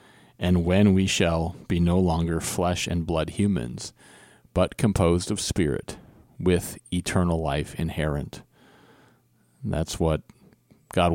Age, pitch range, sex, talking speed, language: 40-59, 85-100 Hz, male, 125 wpm, English